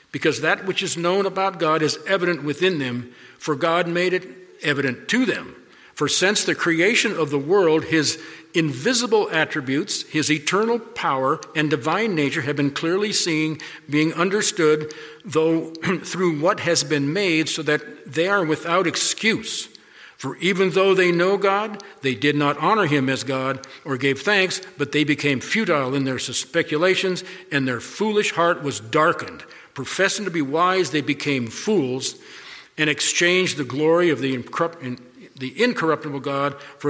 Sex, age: male, 50-69